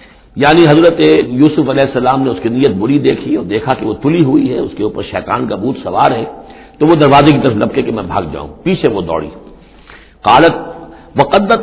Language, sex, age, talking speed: Urdu, male, 60-79, 210 wpm